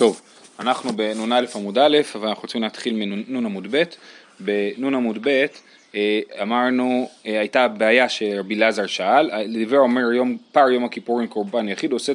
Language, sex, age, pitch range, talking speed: Hebrew, male, 30-49, 115-150 Hz, 125 wpm